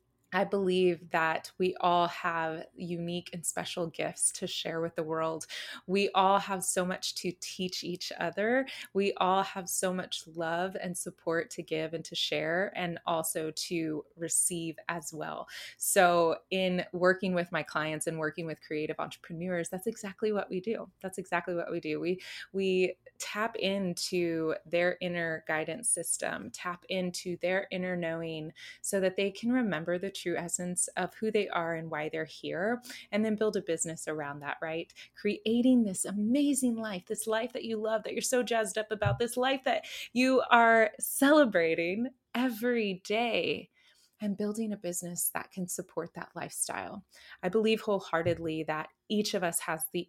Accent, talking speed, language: American, 170 wpm, English